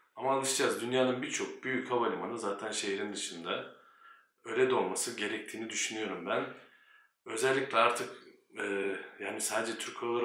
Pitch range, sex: 115-140 Hz, male